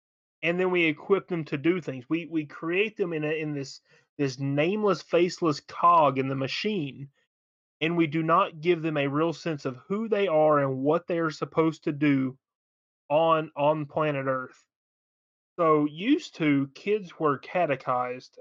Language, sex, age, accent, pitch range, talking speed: English, male, 30-49, American, 140-170 Hz, 175 wpm